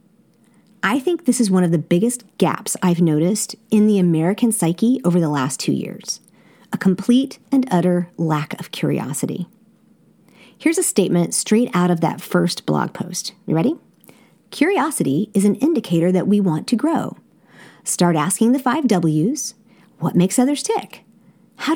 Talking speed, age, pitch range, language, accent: 160 wpm, 40-59, 175-240 Hz, English, American